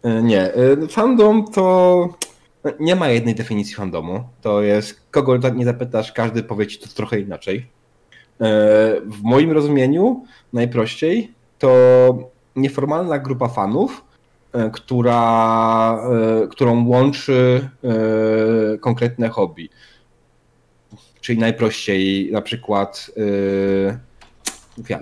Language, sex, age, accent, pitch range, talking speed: Polish, male, 30-49, native, 110-130 Hz, 90 wpm